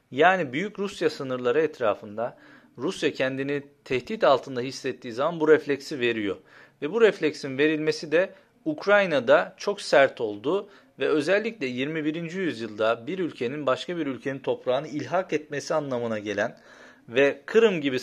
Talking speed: 135 wpm